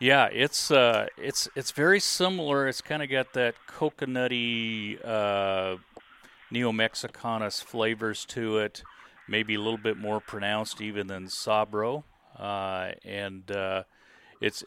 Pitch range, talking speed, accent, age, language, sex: 95-120 Hz, 125 wpm, American, 40-59, English, male